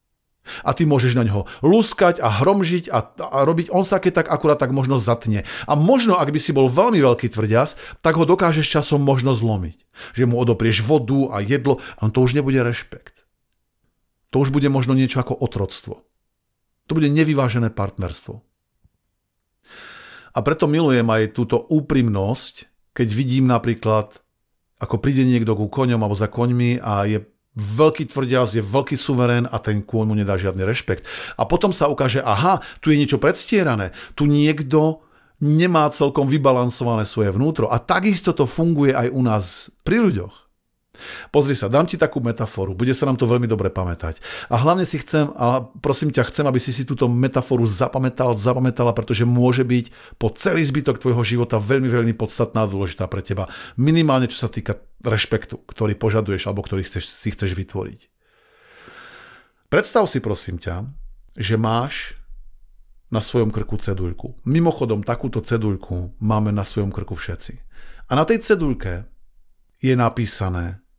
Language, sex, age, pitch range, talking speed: Slovak, male, 50-69, 110-140 Hz, 165 wpm